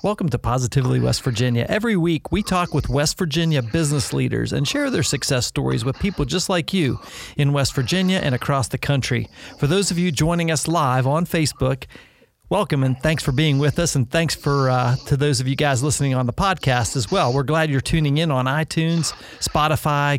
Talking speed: 210 wpm